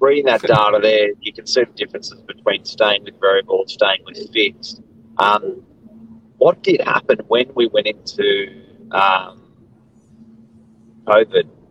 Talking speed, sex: 135 wpm, male